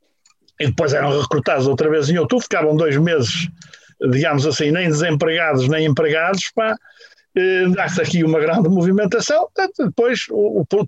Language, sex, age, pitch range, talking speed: Portuguese, male, 60-79, 140-175 Hz, 155 wpm